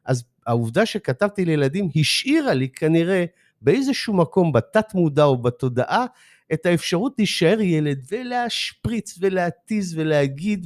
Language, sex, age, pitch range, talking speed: Hebrew, male, 50-69, 120-195 Hz, 115 wpm